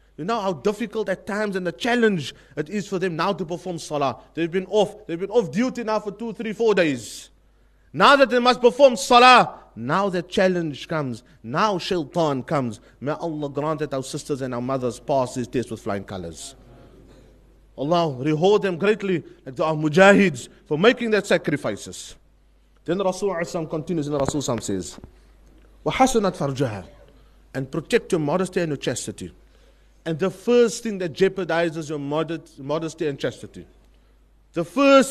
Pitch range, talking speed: 140-225 Hz, 170 wpm